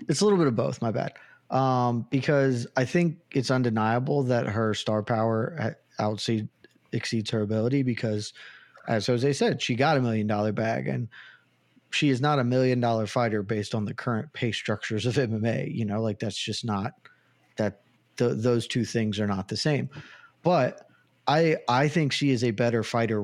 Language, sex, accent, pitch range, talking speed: English, male, American, 110-140 Hz, 180 wpm